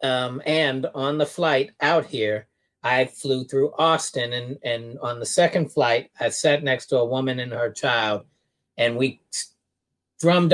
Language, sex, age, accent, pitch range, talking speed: English, male, 40-59, American, 120-150 Hz, 170 wpm